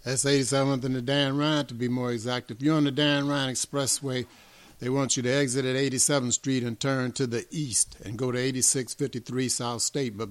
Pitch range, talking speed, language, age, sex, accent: 115-135 Hz, 215 wpm, English, 60-79, male, American